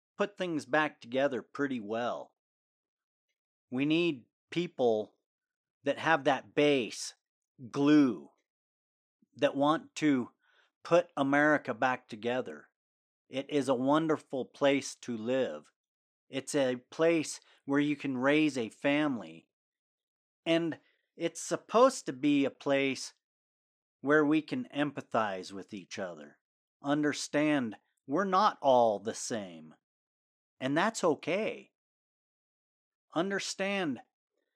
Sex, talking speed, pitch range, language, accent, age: male, 105 wpm, 130-170 Hz, English, American, 40-59